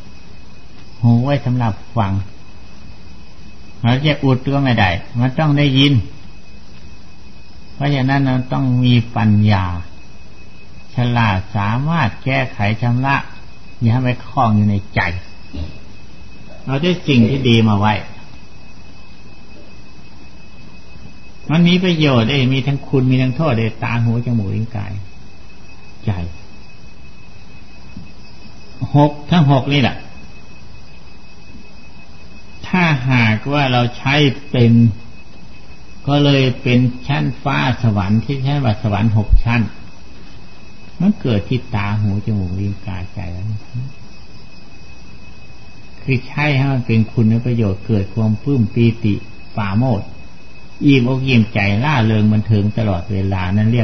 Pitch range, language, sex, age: 100-135 Hz, Thai, male, 60-79